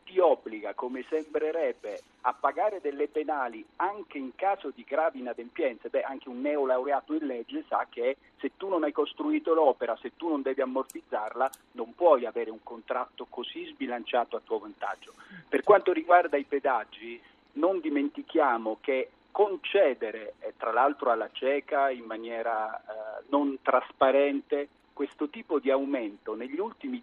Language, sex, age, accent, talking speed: Italian, male, 40-59, native, 145 wpm